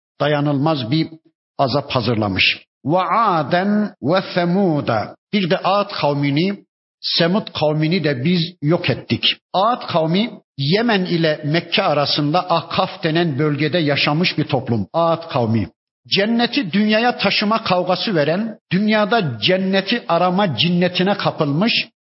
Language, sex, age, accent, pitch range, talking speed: Turkish, male, 50-69, native, 155-190 Hz, 110 wpm